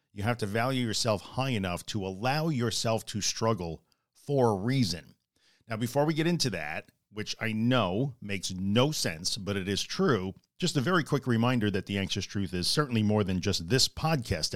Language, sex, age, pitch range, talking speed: English, male, 50-69, 100-130 Hz, 195 wpm